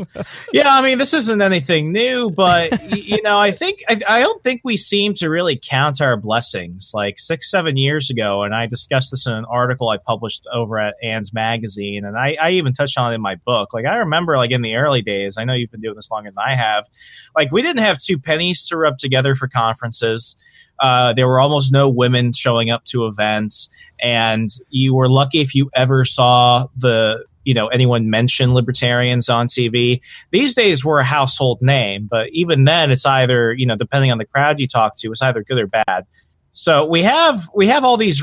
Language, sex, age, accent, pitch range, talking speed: English, male, 20-39, American, 120-155 Hz, 215 wpm